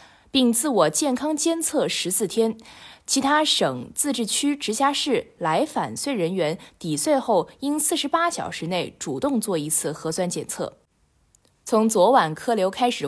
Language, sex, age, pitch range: Chinese, female, 20-39, 175-265 Hz